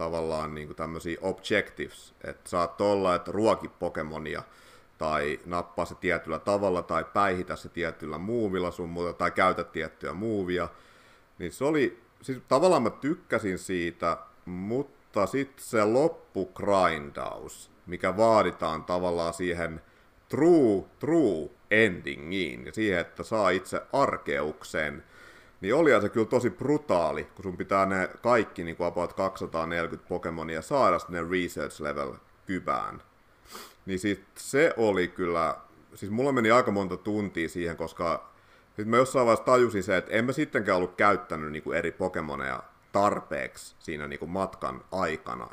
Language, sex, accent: Finnish, male, native